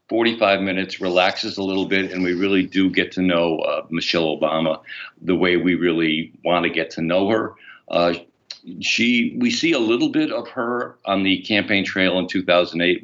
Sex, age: male, 50-69